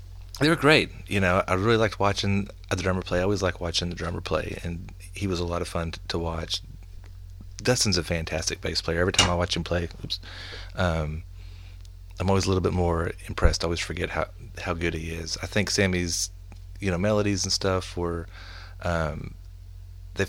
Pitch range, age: 85-95 Hz, 30-49